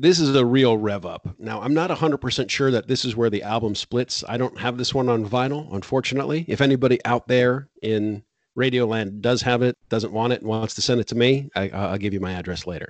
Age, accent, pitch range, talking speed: 40-59, American, 100-125 Hz, 240 wpm